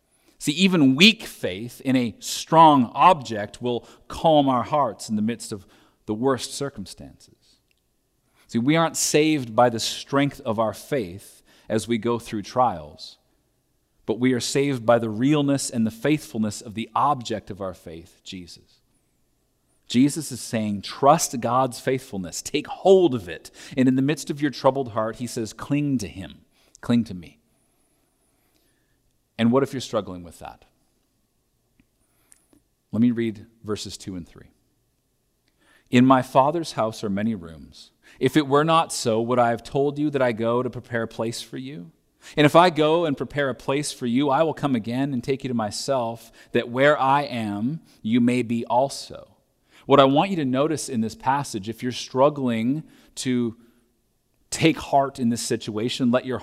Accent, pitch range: American, 115-140 Hz